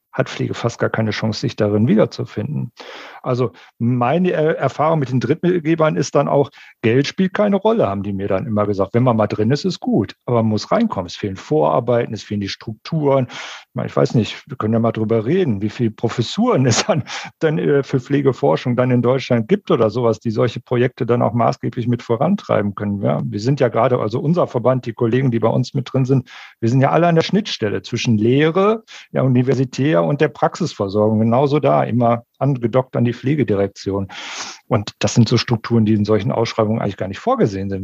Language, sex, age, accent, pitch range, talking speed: German, male, 50-69, German, 115-150 Hz, 210 wpm